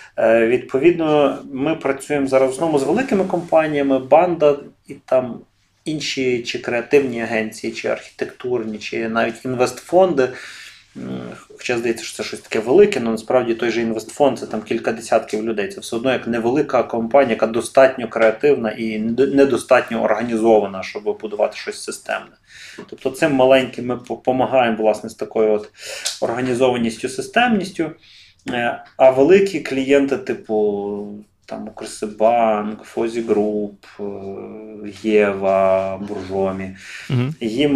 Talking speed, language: 115 wpm, Ukrainian